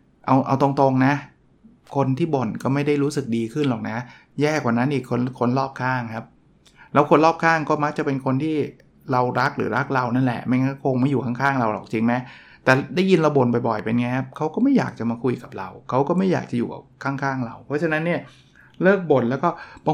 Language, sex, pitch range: Thai, male, 120-150 Hz